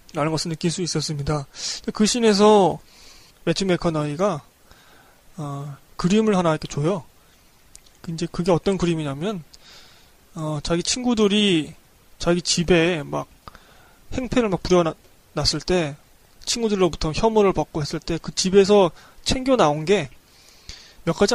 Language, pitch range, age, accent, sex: Korean, 155-195 Hz, 20-39, native, male